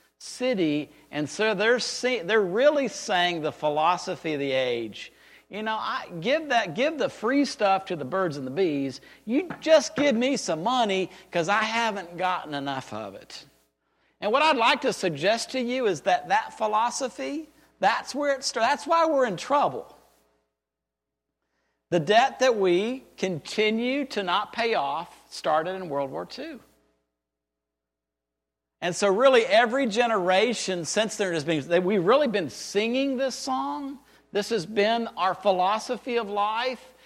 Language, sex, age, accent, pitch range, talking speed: English, male, 50-69, American, 165-245 Hz, 155 wpm